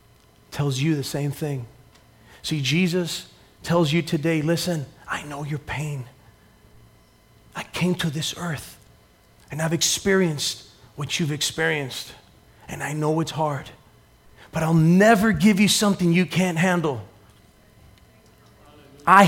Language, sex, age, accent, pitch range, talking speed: English, male, 30-49, American, 130-160 Hz, 130 wpm